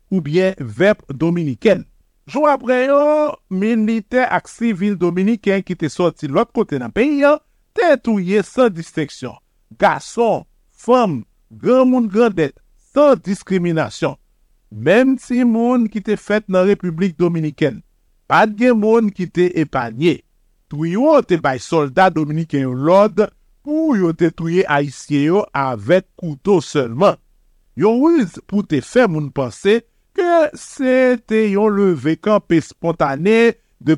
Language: French